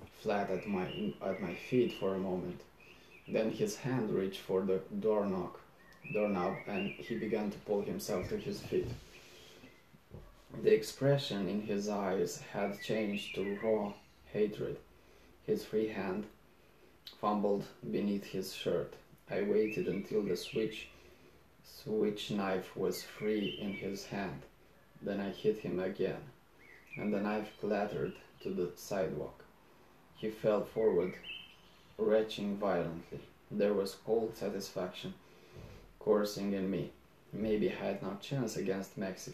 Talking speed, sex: 130 wpm, male